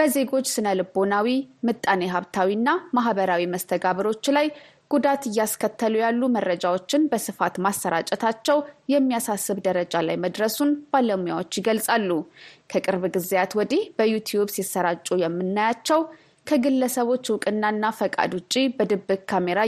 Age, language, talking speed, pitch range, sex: 20-39, Amharic, 90 wpm, 190-265 Hz, female